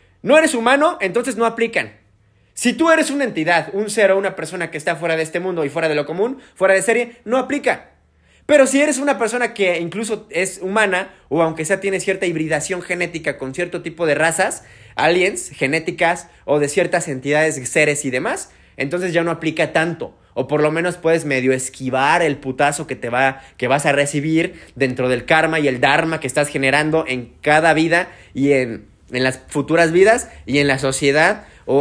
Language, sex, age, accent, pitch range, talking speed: English, male, 30-49, Mexican, 140-190 Hz, 195 wpm